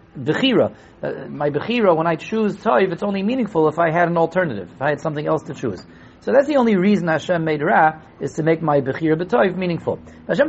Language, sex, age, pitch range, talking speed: English, male, 40-59, 120-165 Hz, 225 wpm